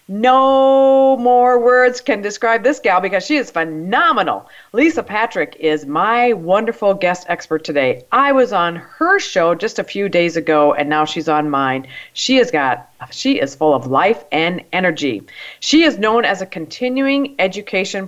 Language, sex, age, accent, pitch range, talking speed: English, female, 40-59, American, 170-250 Hz, 170 wpm